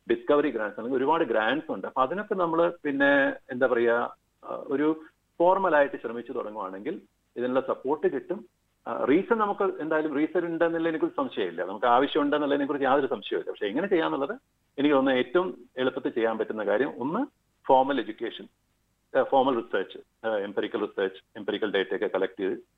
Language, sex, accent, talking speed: Malayalam, male, native, 135 wpm